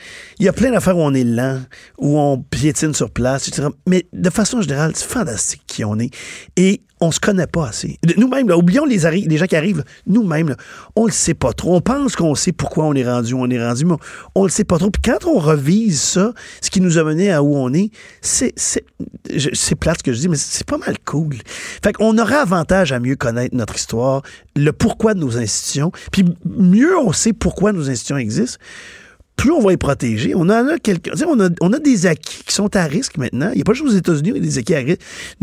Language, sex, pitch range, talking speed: French, male, 145-205 Hz, 255 wpm